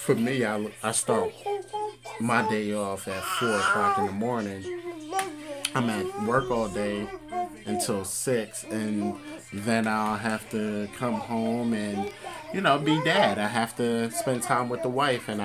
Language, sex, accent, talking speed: English, male, American, 165 wpm